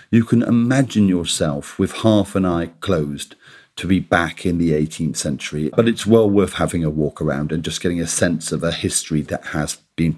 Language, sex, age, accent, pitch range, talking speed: English, male, 40-59, British, 90-125 Hz, 205 wpm